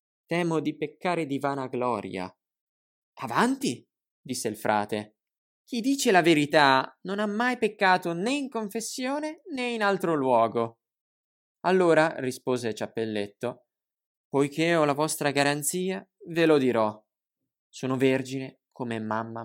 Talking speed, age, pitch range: 125 wpm, 20-39, 115-180 Hz